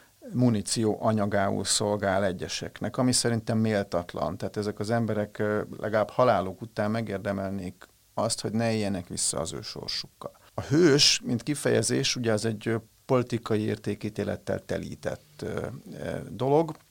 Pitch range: 100-120 Hz